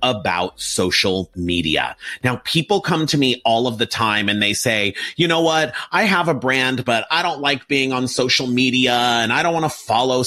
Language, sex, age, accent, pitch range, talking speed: English, male, 30-49, American, 110-145 Hz, 210 wpm